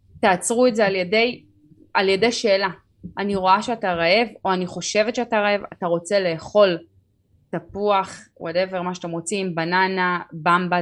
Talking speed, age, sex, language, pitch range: 150 wpm, 20-39, female, Hebrew, 165-205 Hz